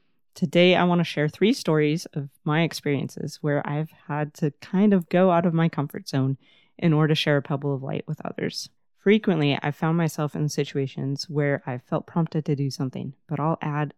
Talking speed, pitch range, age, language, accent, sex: 205 wpm, 145-180 Hz, 30-49, English, American, female